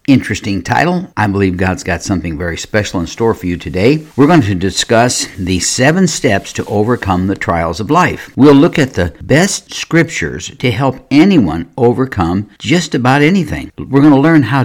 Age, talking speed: 60-79, 185 wpm